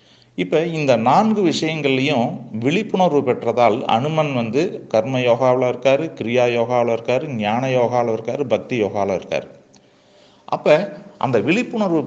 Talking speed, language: 115 wpm, Tamil